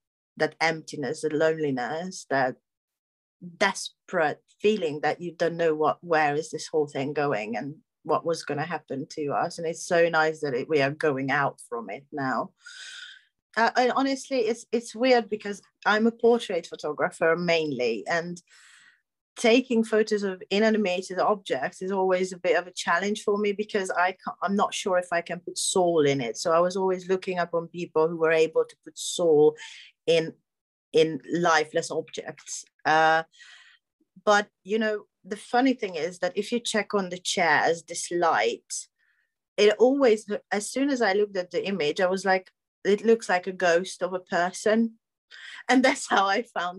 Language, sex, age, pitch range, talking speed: English, female, 30-49, 165-215 Hz, 180 wpm